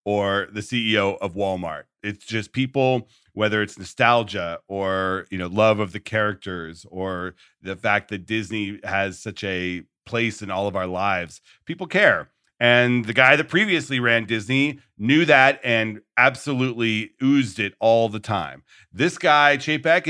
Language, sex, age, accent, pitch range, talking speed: English, male, 40-59, American, 105-135 Hz, 160 wpm